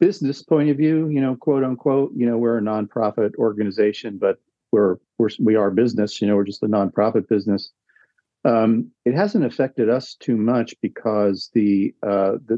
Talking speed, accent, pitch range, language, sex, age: 175 wpm, American, 95-115 Hz, English, male, 50-69